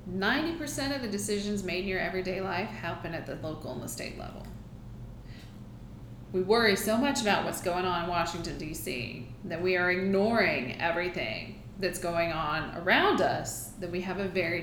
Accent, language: American, English